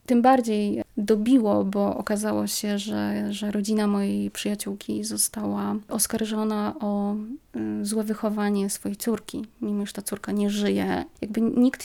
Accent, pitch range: native, 200-230 Hz